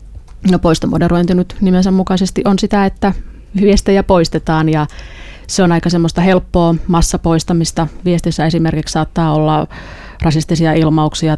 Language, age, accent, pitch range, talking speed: Finnish, 30-49, native, 155-180 Hz, 115 wpm